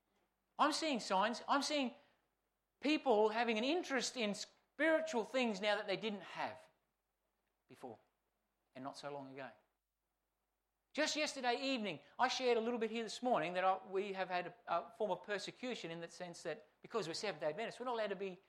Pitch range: 170-235 Hz